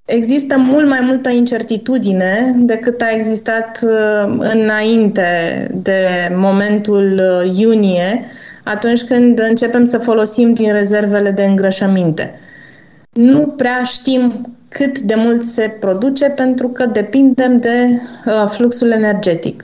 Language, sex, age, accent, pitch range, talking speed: Romanian, female, 20-39, native, 190-230 Hz, 105 wpm